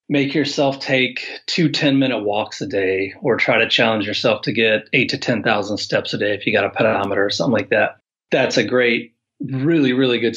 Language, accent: English, American